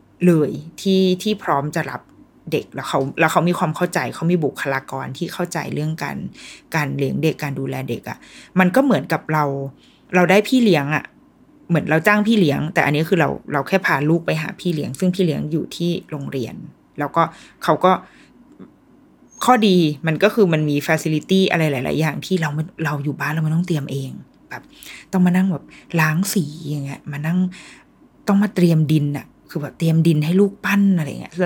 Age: 20-39